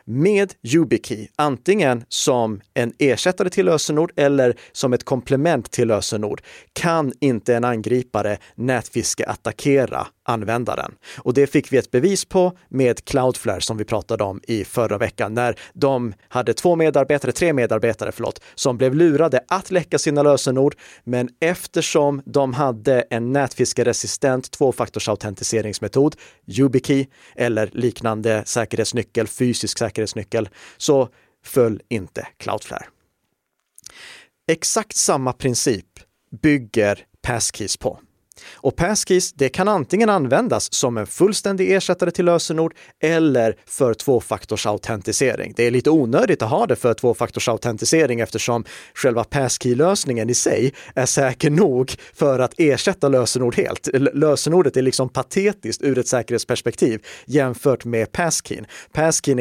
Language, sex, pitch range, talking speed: Swedish, male, 115-150 Hz, 125 wpm